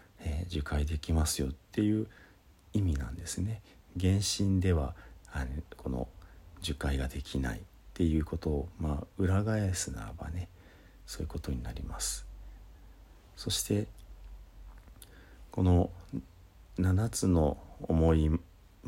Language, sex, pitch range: Japanese, male, 75-95 Hz